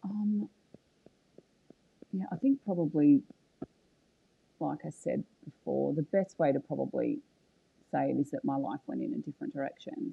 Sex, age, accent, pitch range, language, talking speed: female, 30-49, Australian, 145-195 Hz, English, 150 wpm